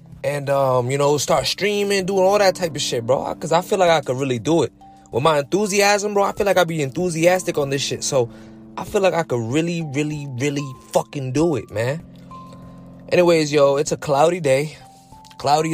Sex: male